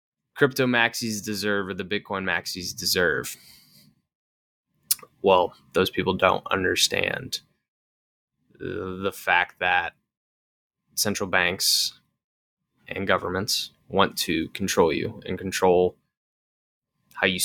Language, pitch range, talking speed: English, 90-110 Hz, 95 wpm